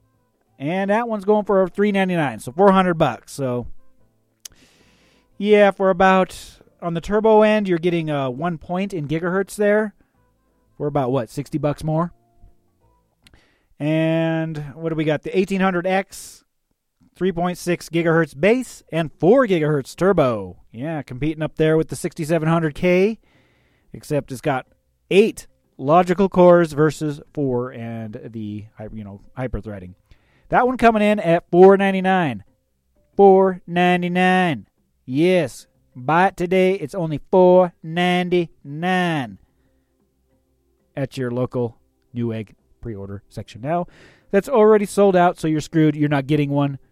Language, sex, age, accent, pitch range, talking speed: English, male, 30-49, American, 115-180 Hz, 125 wpm